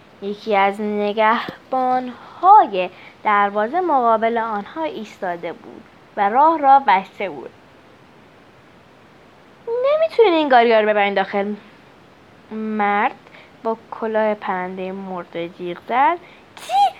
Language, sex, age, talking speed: Persian, female, 20-39, 90 wpm